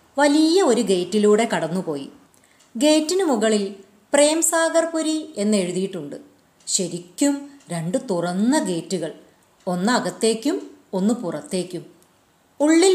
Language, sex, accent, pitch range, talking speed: Malayalam, female, native, 185-285 Hz, 80 wpm